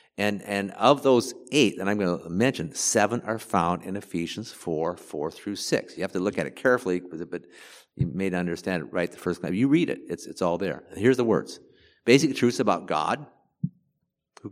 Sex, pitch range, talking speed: male, 90-120 Hz, 210 wpm